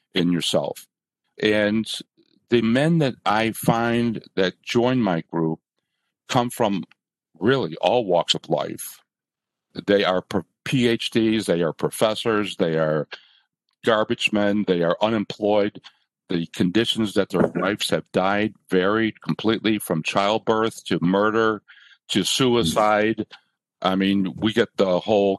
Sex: male